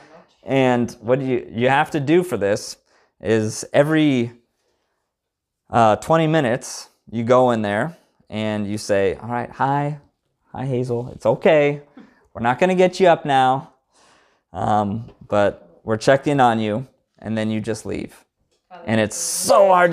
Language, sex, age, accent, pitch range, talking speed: English, male, 30-49, American, 120-160 Hz, 155 wpm